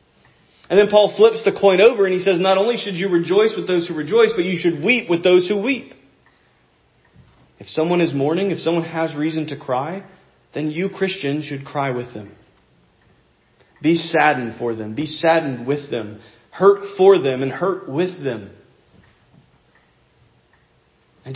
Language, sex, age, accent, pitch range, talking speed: English, male, 40-59, American, 140-195 Hz, 170 wpm